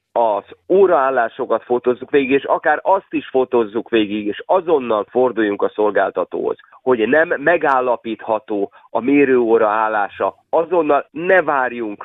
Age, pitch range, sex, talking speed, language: 30-49, 115-165 Hz, male, 120 wpm, Hungarian